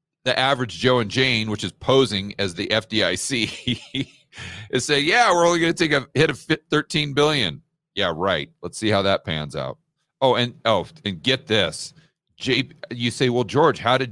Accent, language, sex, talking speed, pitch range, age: American, English, male, 190 wpm, 125-160 Hz, 40-59